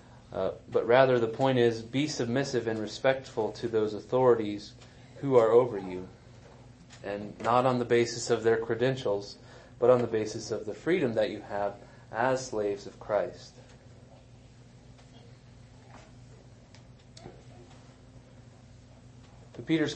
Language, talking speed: English, 120 wpm